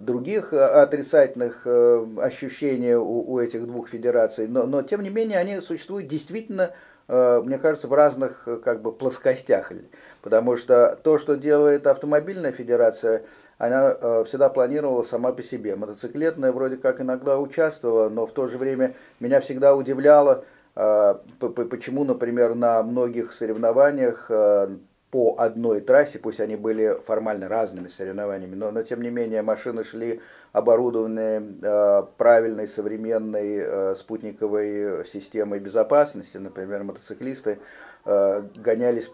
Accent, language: native, Russian